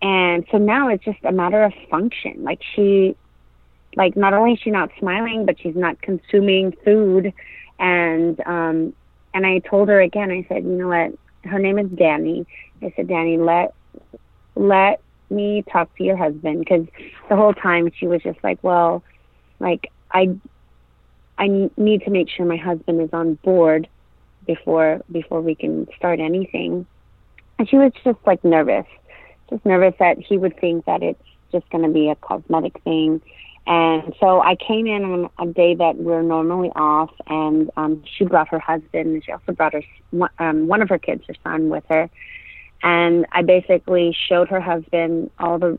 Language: English